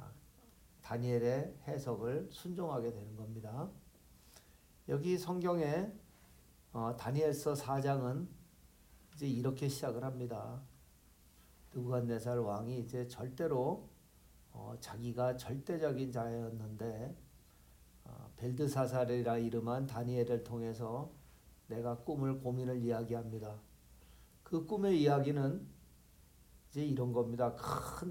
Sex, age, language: male, 50-69, Korean